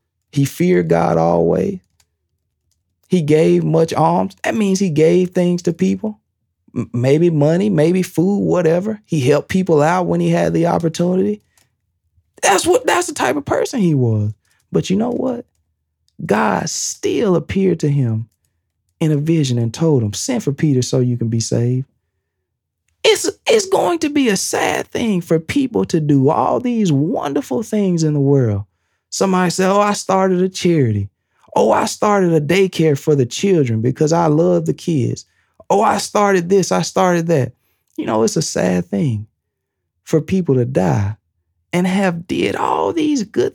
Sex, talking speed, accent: male, 170 wpm, American